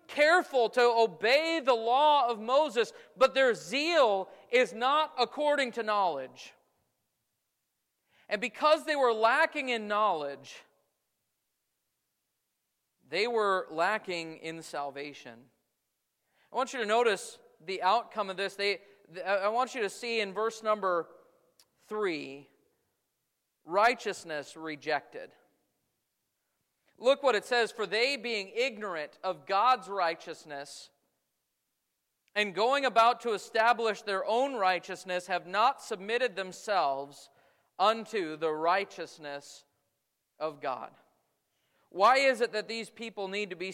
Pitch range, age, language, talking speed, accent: 185-255 Hz, 40-59, English, 115 wpm, American